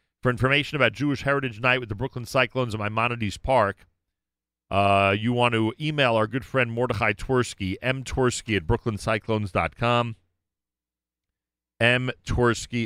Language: English